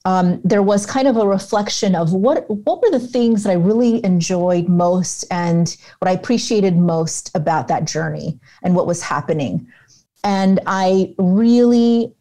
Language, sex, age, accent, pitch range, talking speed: English, female, 30-49, American, 165-195 Hz, 160 wpm